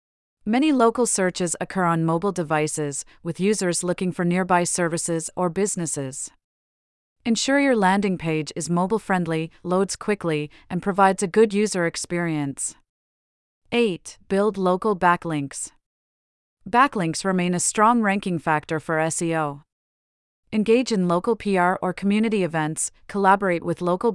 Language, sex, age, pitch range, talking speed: English, female, 40-59, 160-205 Hz, 130 wpm